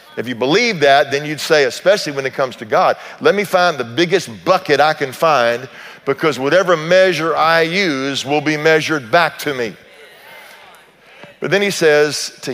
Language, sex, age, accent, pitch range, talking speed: English, male, 50-69, American, 130-165 Hz, 180 wpm